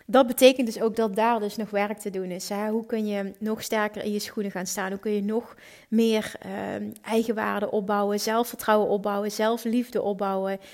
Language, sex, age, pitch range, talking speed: Dutch, female, 30-49, 200-230 Hz, 190 wpm